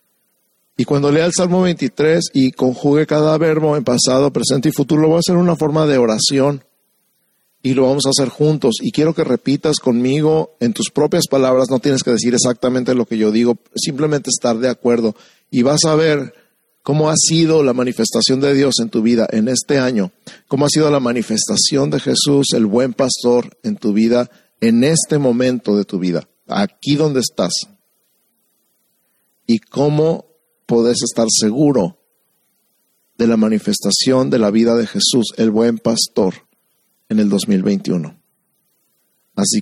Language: Spanish